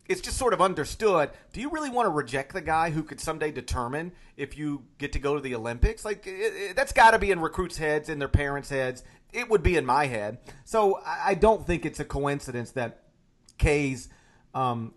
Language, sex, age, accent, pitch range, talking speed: English, male, 40-59, American, 125-160 Hz, 225 wpm